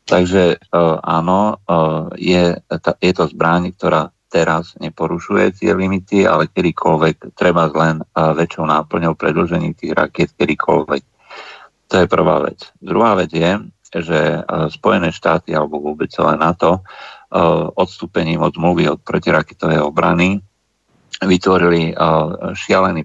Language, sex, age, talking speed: Slovak, male, 50-69, 110 wpm